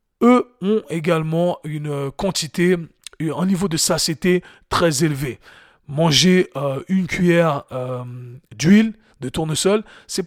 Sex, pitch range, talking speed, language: male, 155-195 Hz, 115 wpm, French